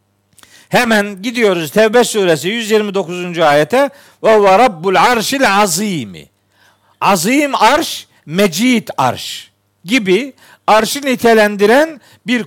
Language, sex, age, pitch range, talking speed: Turkish, male, 50-69, 155-245 Hz, 85 wpm